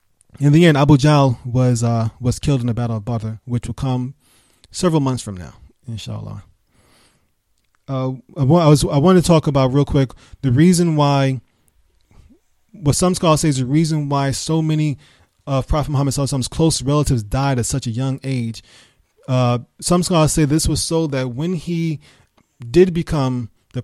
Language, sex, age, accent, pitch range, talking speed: English, male, 20-39, American, 120-150 Hz, 180 wpm